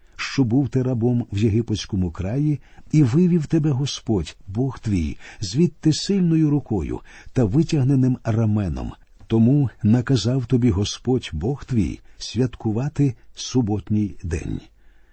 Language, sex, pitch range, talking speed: Ukrainian, male, 105-145 Hz, 110 wpm